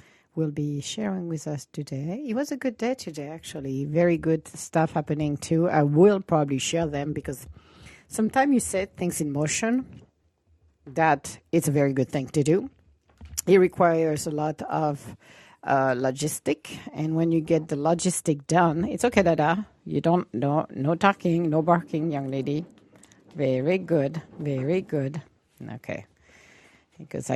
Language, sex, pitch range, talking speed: English, female, 135-175 Hz, 155 wpm